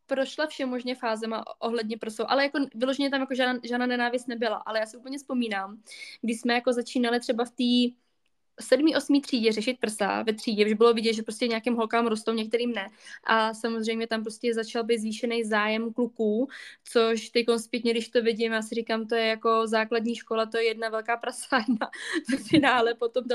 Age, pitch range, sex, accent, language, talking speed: 20-39, 225-265 Hz, female, native, Czech, 190 wpm